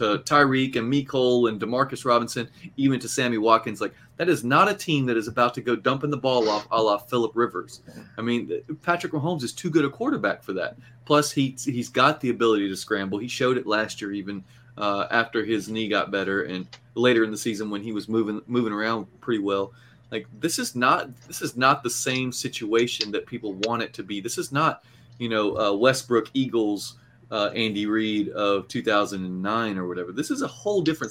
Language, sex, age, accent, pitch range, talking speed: English, male, 30-49, American, 110-145 Hz, 210 wpm